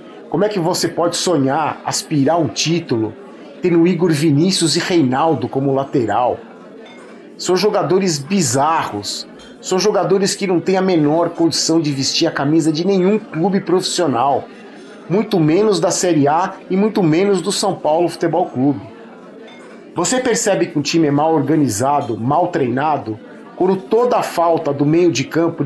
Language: Portuguese